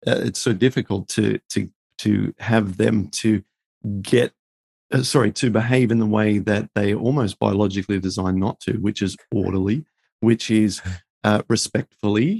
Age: 40-59